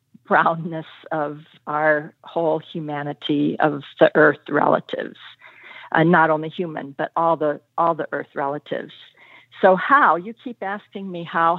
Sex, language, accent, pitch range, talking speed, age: female, English, American, 165-235 Hz, 140 wpm, 60-79